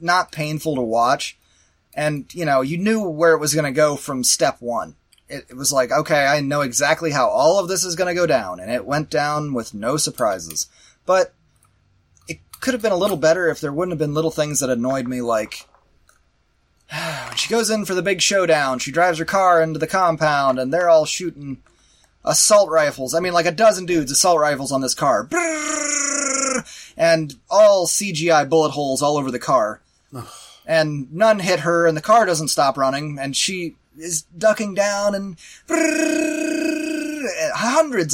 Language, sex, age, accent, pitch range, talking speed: English, male, 20-39, American, 145-210 Hz, 185 wpm